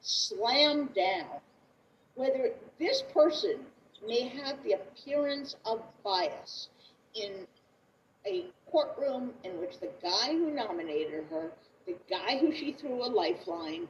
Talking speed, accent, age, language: 120 wpm, American, 50-69, English